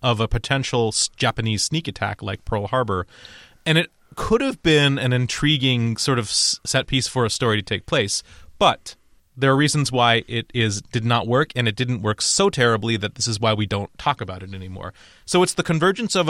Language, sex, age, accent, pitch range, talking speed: English, male, 30-49, American, 110-140 Hz, 210 wpm